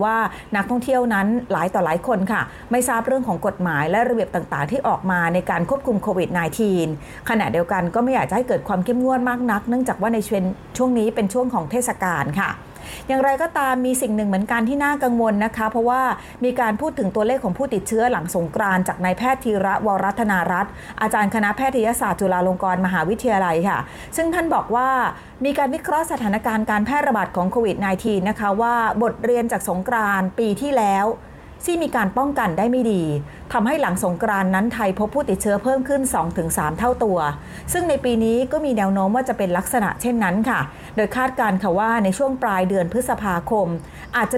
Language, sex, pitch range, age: Thai, female, 190-250 Hz, 30-49